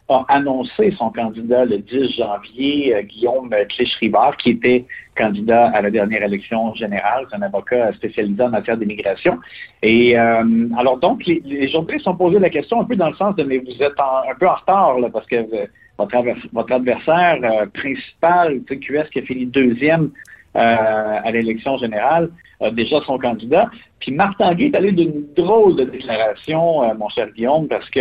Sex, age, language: male, 50-69, French